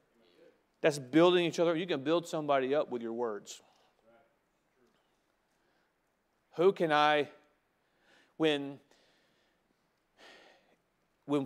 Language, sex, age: English, male, 40-59